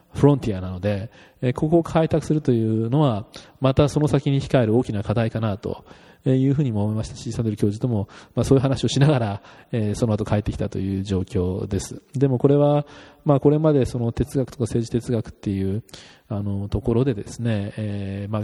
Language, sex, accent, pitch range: Japanese, male, native, 105-130 Hz